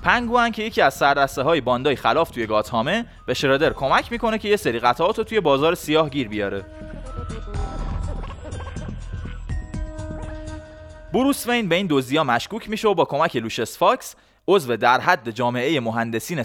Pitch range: 115-195 Hz